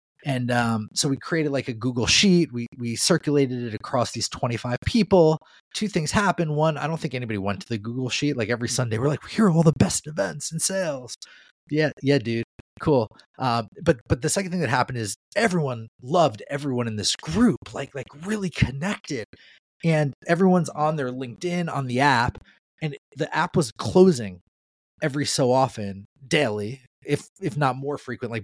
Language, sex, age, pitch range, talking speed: English, male, 30-49, 115-155 Hz, 185 wpm